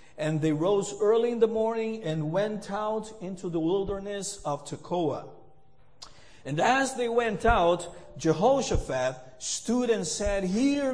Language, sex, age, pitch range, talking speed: English, male, 50-69, 150-205 Hz, 135 wpm